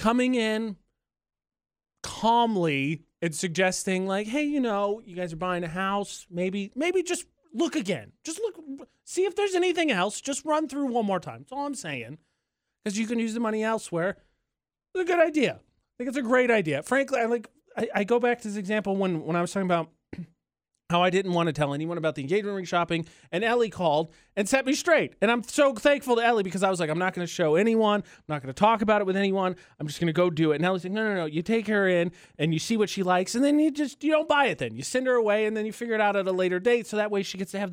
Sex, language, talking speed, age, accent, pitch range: male, English, 260 wpm, 30-49, American, 175-240 Hz